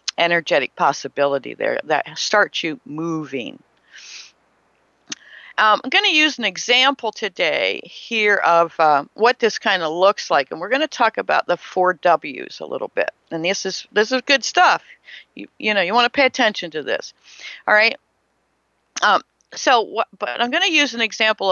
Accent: American